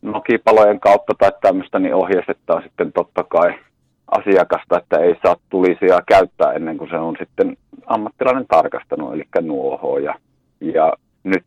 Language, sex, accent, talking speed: Finnish, male, native, 140 wpm